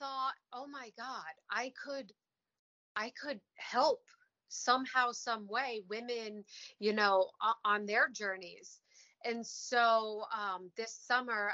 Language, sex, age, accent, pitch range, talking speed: English, female, 30-49, American, 190-230 Hz, 120 wpm